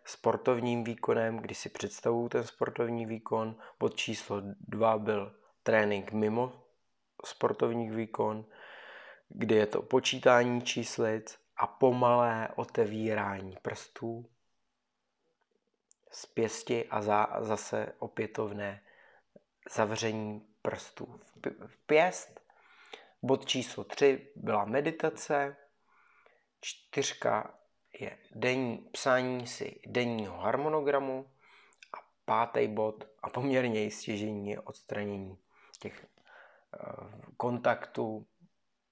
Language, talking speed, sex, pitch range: Czech, 90 wpm, male, 105-125 Hz